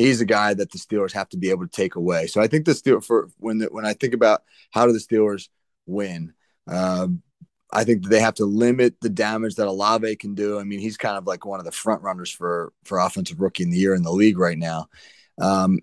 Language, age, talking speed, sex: English, 30-49, 255 wpm, male